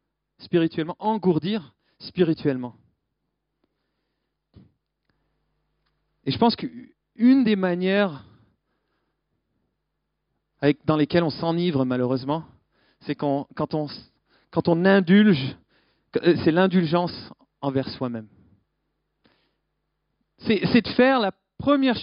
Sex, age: male, 40-59